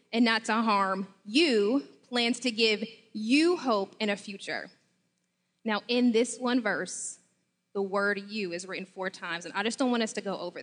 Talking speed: 190 wpm